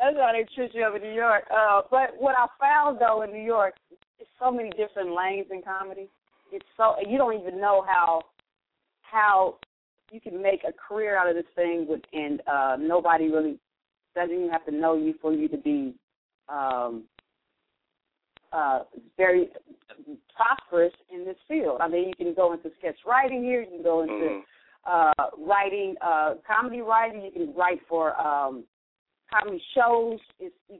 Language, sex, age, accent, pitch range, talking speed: English, female, 30-49, American, 170-240 Hz, 175 wpm